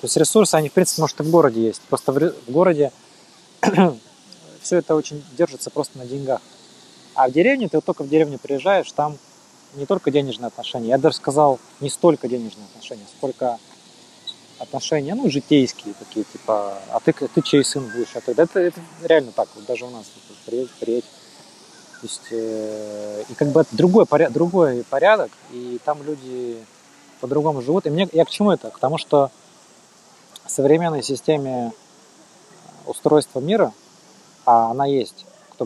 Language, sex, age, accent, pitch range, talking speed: Russian, male, 20-39, native, 120-160 Hz, 170 wpm